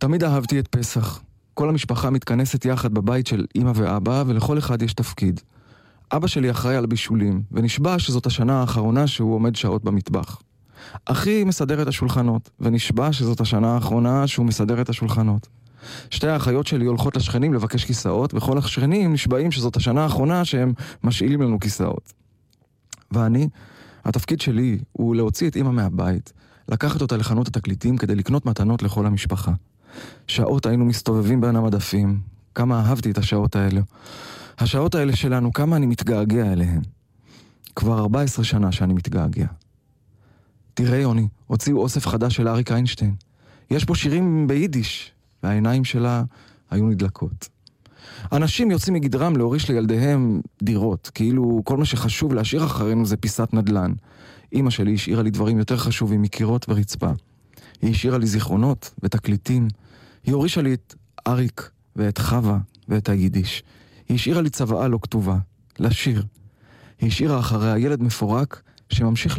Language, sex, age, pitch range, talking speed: Hebrew, male, 20-39, 110-130 Hz, 140 wpm